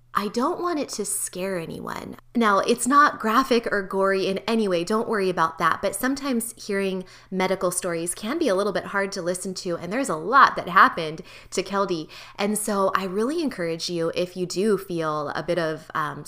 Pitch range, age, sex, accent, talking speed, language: 160-195 Hz, 20-39, female, American, 205 wpm, English